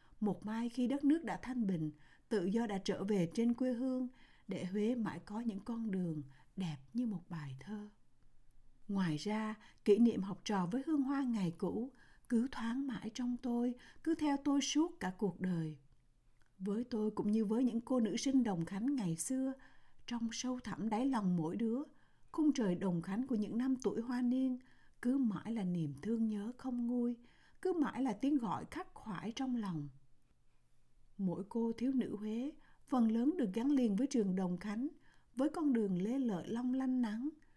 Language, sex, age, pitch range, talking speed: Vietnamese, female, 60-79, 195-255 Hz, 190 wpm